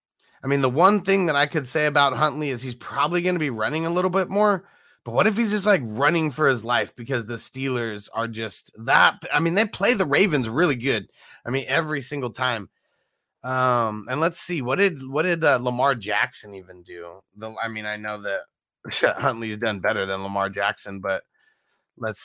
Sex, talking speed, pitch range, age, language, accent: male, 210 wpm, 115-170 Hz, 30-49, English, American